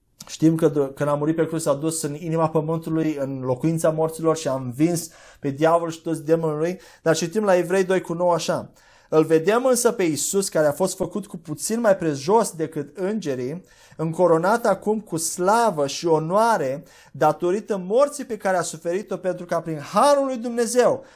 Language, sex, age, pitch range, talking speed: Romanian, male, 30-49, 150-185 Hz, 180 wpm